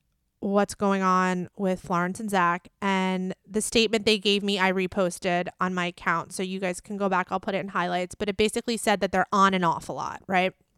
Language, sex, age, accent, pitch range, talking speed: English, female, 20-39, American, 185-215 Hz, 230 wpm